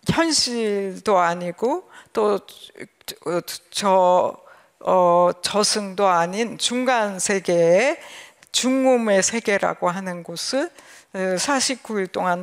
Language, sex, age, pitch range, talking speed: English, female, 50-69, 190-245 Hz, 70 wpm